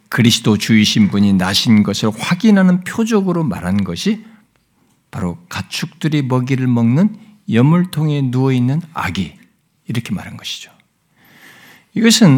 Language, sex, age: Korean, male, 60-79